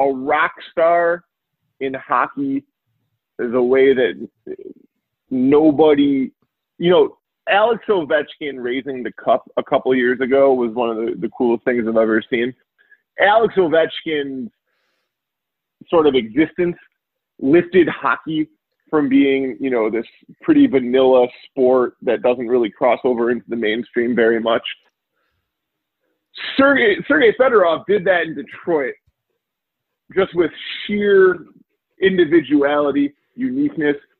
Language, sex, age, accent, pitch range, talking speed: English, male, 20-39, American, 130-190 Hz, 125 wpm